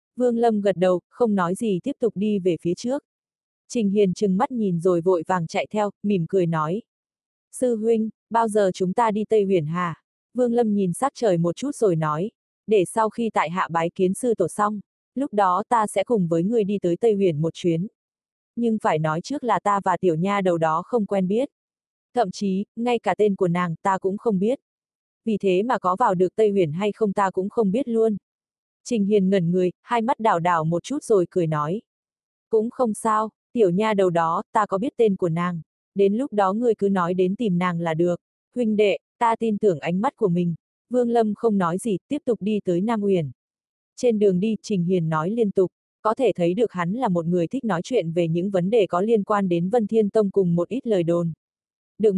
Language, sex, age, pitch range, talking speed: Vietnamese, female, 20-39, 180-225 Hz, 230 wpm